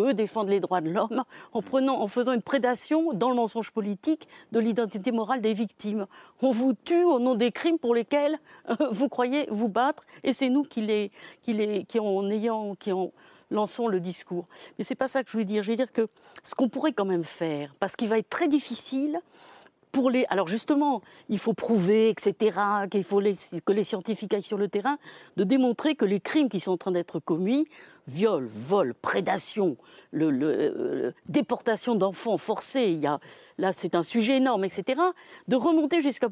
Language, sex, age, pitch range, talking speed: French, female, 60-79, 200-265 Hz, 205 wpm